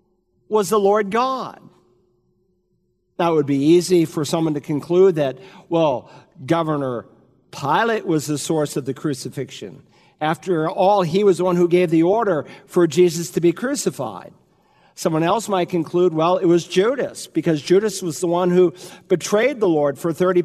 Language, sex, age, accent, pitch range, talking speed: English, male, 50-69, American, 160-215 Hz, 165 wpm